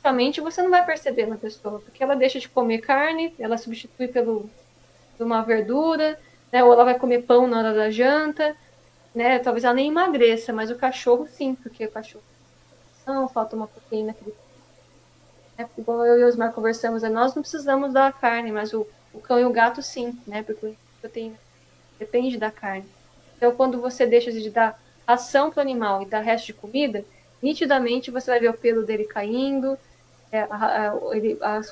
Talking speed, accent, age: 180 wpm, Brazilian, 10-29